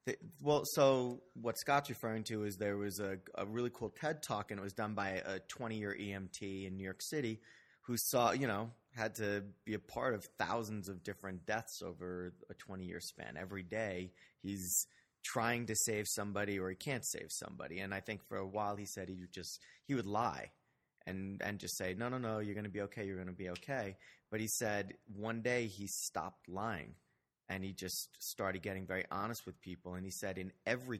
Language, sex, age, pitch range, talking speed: English, male, 30-49, 95-115 Hz, 215 wpm